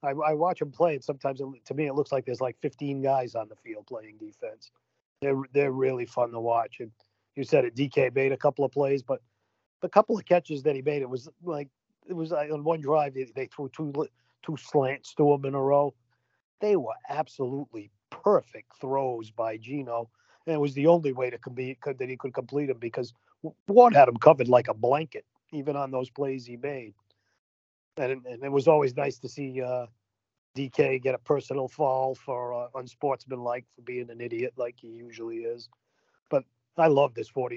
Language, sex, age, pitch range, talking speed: English, male, 40-59, 120-145 Hz, 205 wpm